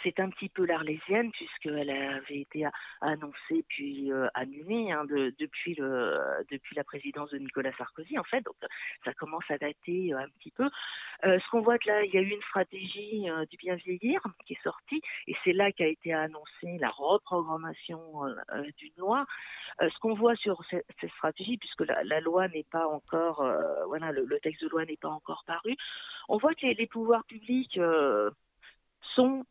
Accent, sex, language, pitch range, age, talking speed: French, female, French, 155-225 Hz, 40-59, 195 wpm